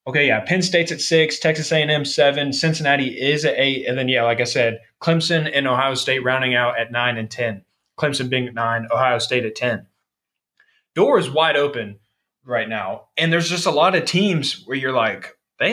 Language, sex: English, male